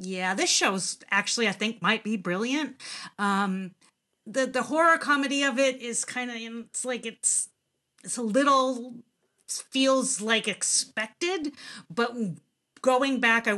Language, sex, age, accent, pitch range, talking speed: English, female, 40-59, American, 175-225 Hz, 140 wpm